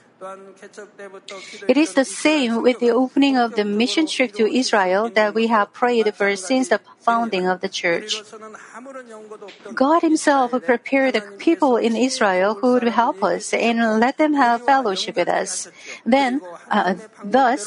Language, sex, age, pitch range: Korean, female, 50-69, 210-260 Hz